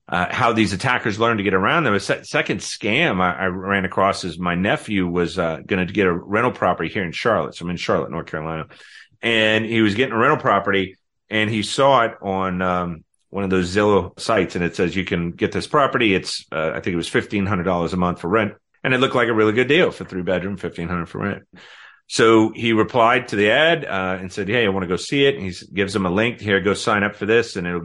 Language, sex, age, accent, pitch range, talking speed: English, male, 30-49, American, 90-110 Hz, 250 wpm